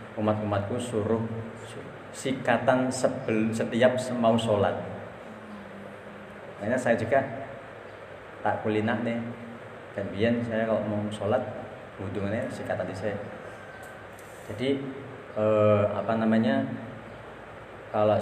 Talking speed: 100 wpm